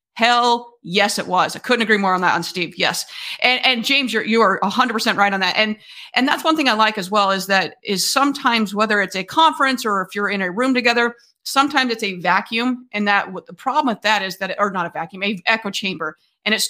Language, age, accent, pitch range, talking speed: English, 30-49, American, 195-240 Hz, 250 wpm